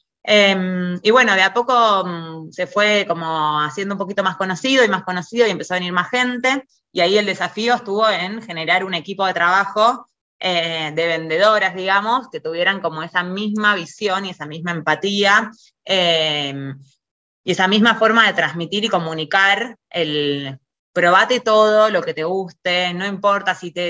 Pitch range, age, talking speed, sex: 165-210 Hz, 20-39, 170 wpm, female